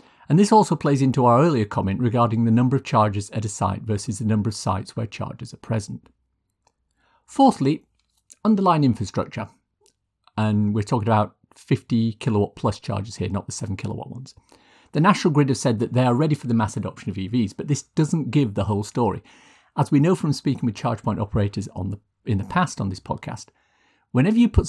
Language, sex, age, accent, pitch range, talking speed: English, male, 50-69, British, 105-140 Hz, 205 wpm